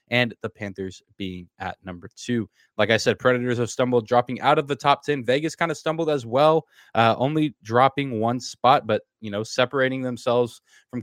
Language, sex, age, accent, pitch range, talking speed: English, male, 20-39, American, 105-125 Hz, 195 wpm